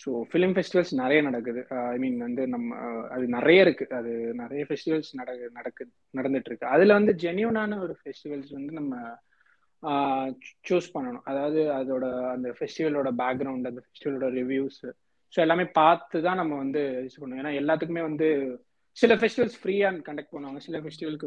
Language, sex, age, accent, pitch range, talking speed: Tamil, male, 20-39, native, 135-175 Hz, 145 wpm